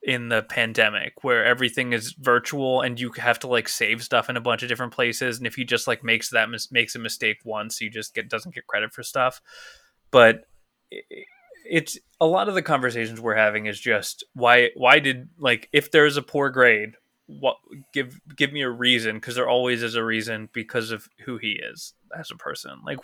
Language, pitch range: English, 115-155 Hz